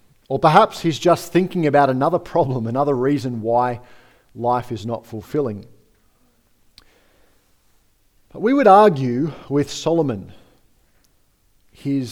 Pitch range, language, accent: 120-180 Hz, English, Australian